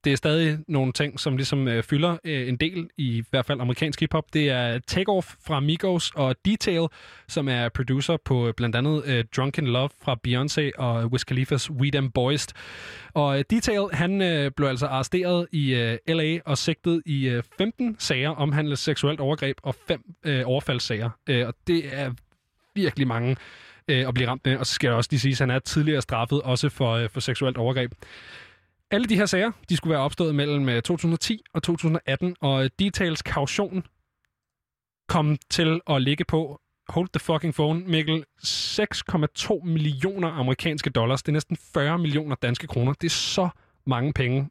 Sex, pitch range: male, 125-160 Hz